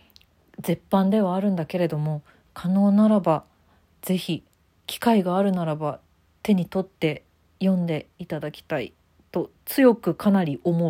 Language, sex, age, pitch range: Japanese, female, 40-59, 145-200 Hz